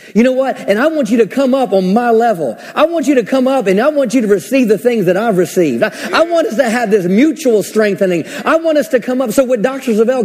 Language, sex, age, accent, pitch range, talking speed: English, male, 40-59, American, 225-280 Hz, 285 wpm